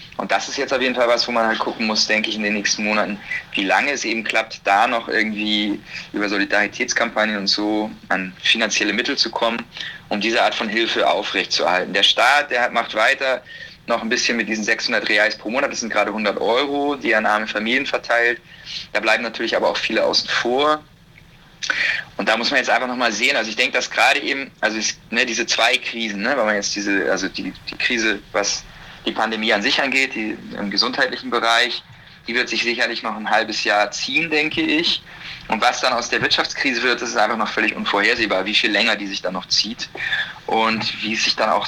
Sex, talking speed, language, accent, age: male, 220 wpm, German, German, 30-49